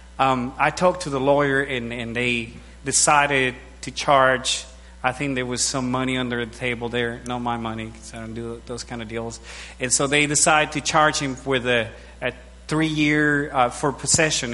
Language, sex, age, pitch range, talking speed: English, male, 30-49, 115-145 Hz, 195 wpm